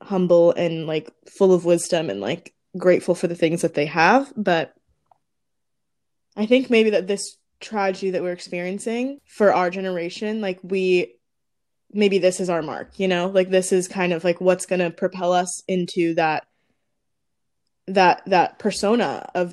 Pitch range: 180-210 Hz